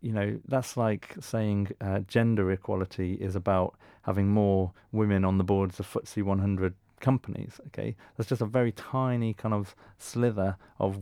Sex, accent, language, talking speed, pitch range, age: male, British, English, 165 wpm, 95-115 Hz, 30-49